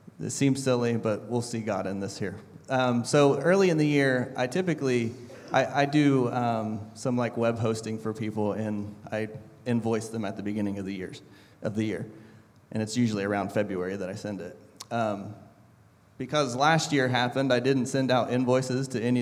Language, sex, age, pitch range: English, male, 30-49, 110-125 Hz